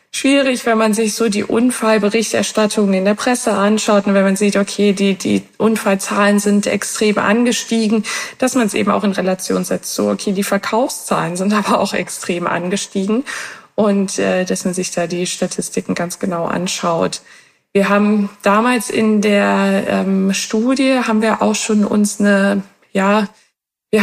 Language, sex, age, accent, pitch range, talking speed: German, female, 20-39, German, 190-220 Hz, 160 wpm